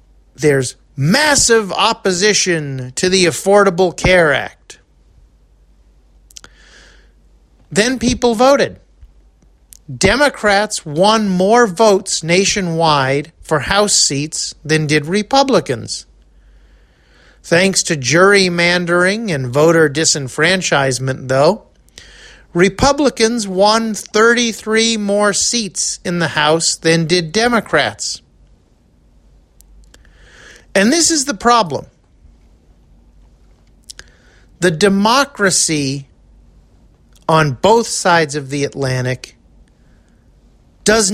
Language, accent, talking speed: English, American, 80 wpm